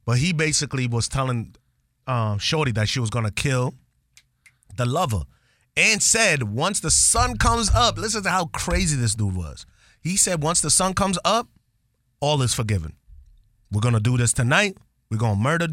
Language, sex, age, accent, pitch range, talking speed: English, male, 30-49, American, 115-155 Hz, 185 wpm